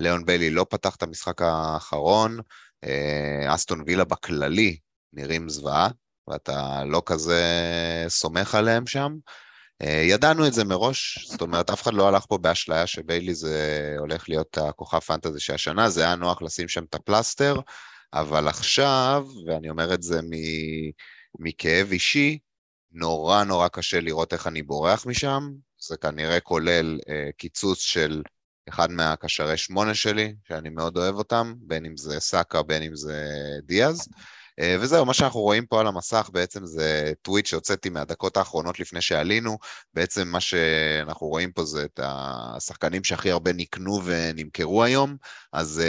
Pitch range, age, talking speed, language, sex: 80-100 Hz, 30-49, 150 wpm, Hebrew, male